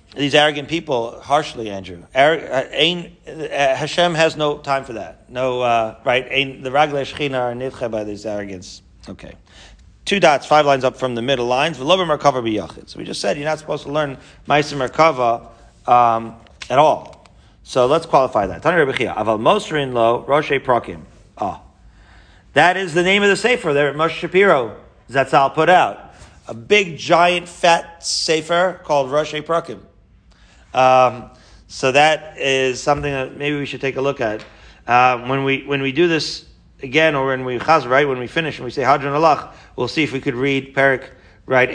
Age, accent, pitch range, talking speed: 40-59, American, 120-155 Hz, 165 wpm